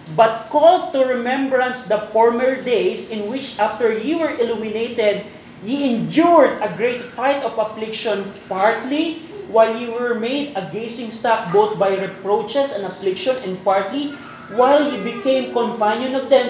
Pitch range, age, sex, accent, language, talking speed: 215-255 Hz, 20-39, male, native, Filipino, 150 wpm